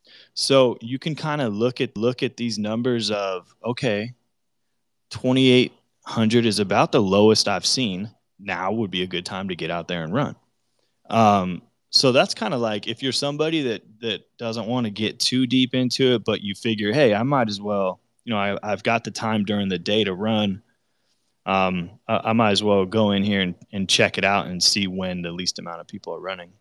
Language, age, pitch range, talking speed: English, 20-39, 95-120 Hz, 215 wpm